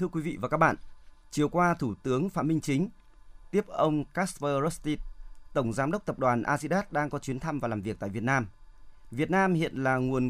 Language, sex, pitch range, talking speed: Vietnamese, male, 130-165 Hz, 220 wpm